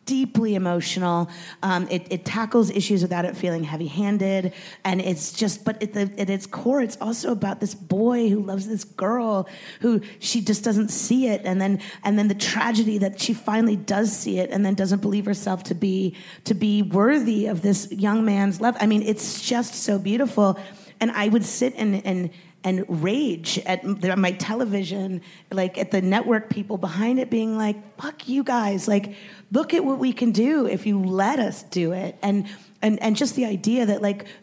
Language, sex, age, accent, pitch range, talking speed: English, female, 30-49, American, 185-220 Hz, 195 wpm